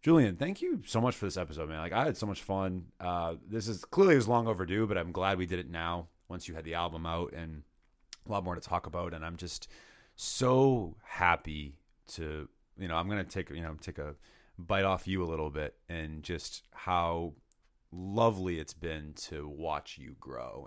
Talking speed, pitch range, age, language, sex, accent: 220 wpm, 80-95 Hz, 30-49, English, male, American